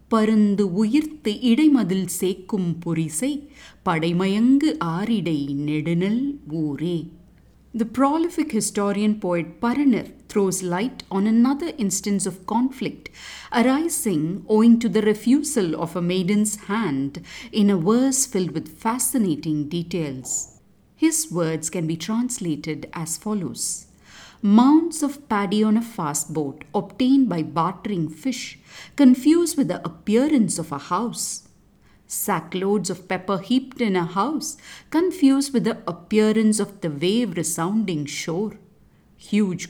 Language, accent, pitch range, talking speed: English, Indian, 170-235 Hz, 105 wpm